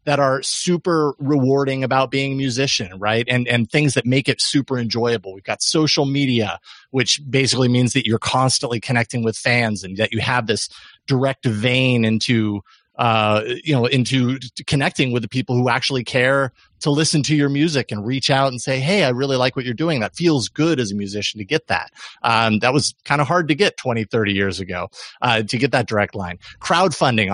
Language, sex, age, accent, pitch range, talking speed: English, male, 30-49, American, 110-140 Hz, 205 wpm